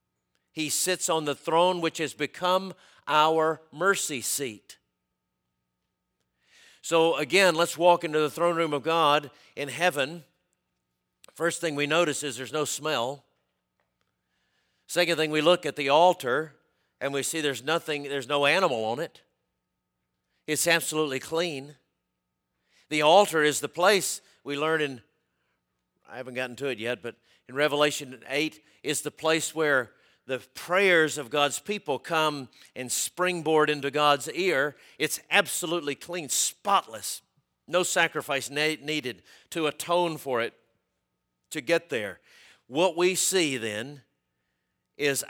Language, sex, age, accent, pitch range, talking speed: English, male, 50-69, American, 105-160 Hz, 135 wpm